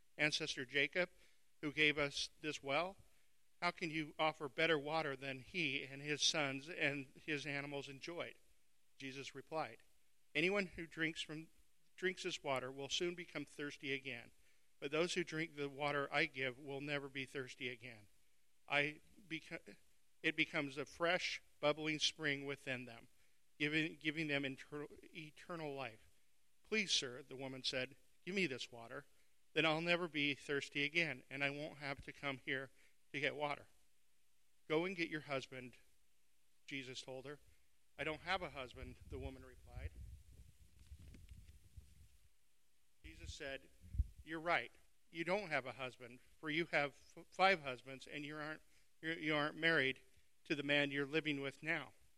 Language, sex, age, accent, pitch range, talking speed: English, male, 50-69, American, 125-160 Hz, 155 wpm